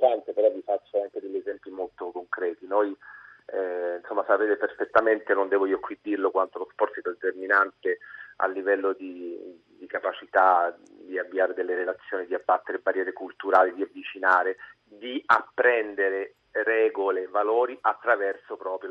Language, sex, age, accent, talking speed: Italian, male, 40-59, native, 145 wpm